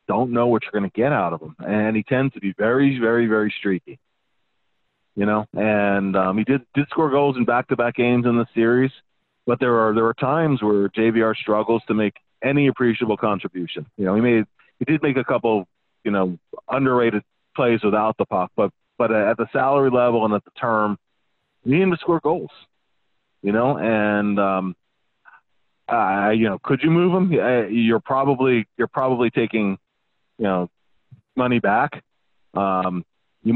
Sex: male